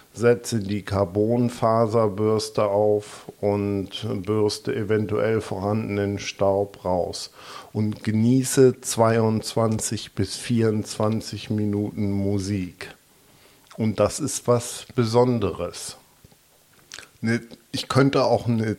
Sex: male